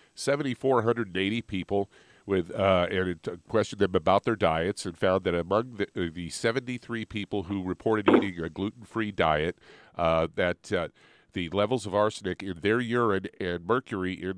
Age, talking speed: 50-69, 185 wpm